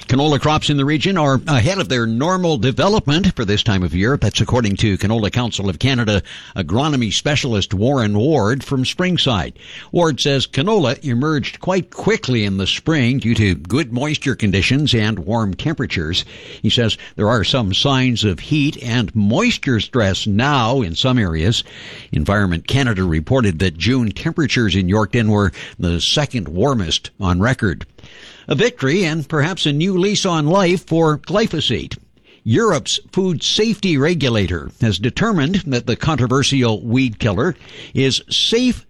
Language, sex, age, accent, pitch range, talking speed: English, male, 60-79, American, 105-150 Hz, 155 wpm